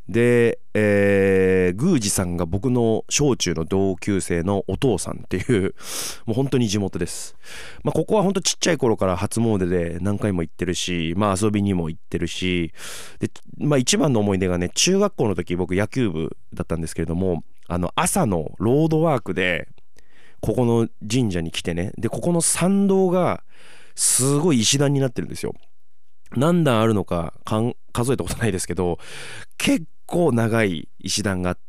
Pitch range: 90-130 Hz